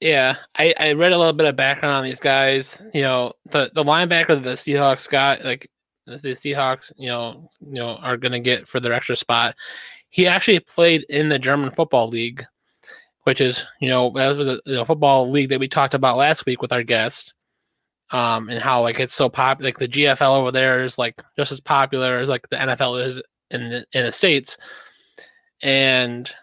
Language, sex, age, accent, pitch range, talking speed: English, male, 20-39, American, 125-145 Hz, 205 wpm